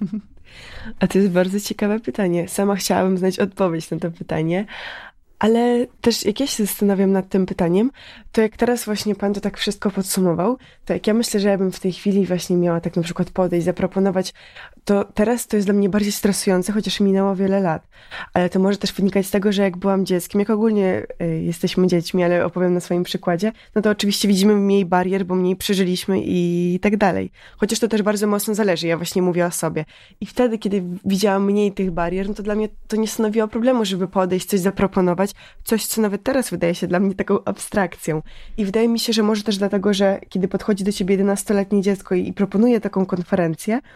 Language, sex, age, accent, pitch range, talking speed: Polish, female, 20-39, native, 185-210 Hz, 210 wpm